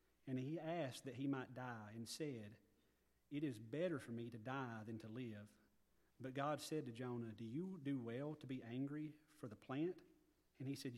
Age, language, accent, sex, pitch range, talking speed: 40-59, English, American, male, 120-140 Hz, 200 wpm